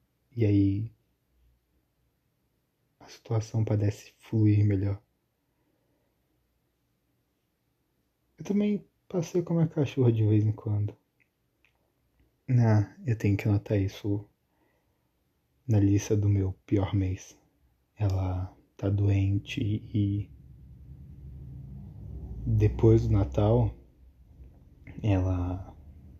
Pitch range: 90-110 Hz